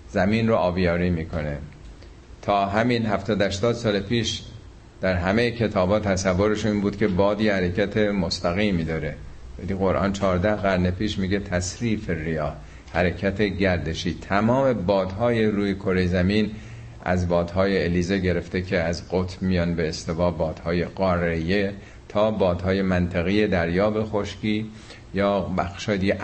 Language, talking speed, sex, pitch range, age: Persian, 125 wpm, male, 90-110 Hz, 50-69